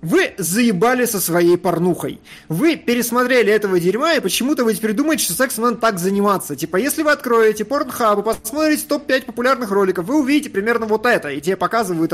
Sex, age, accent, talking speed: male, 20-39, native, 185 wpm